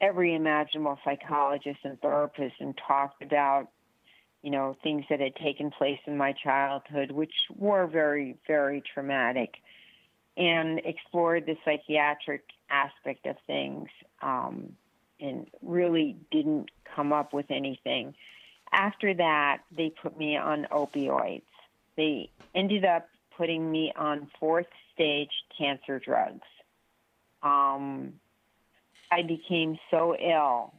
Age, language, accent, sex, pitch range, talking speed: 40-59, English, American, female, 140-160 Hz, 120 wpm